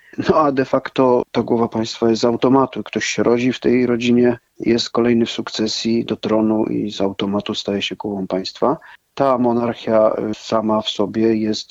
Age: 40-59